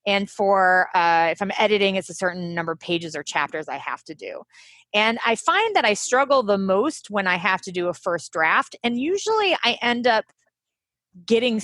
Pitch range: 185-250 Hz